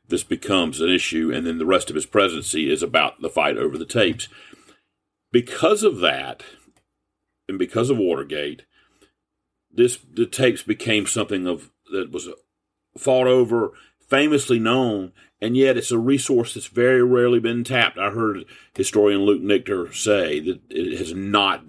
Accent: American